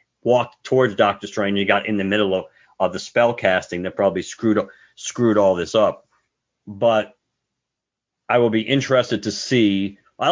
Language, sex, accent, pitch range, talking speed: English, male, American, 90-115 Hz, 175 wpm